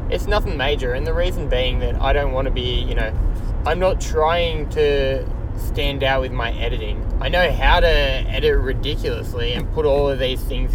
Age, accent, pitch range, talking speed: 20-39, Australian, 95-125 Hz, 200 wpm